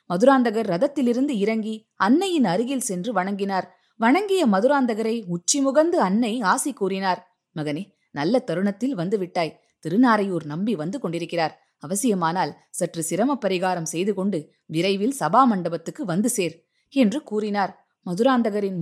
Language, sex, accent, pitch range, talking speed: Tamil, female, native, 195-260 Hz, 100 wpm